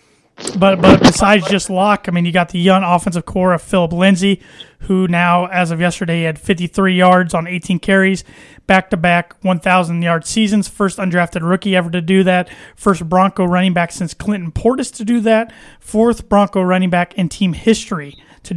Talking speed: 180 wpm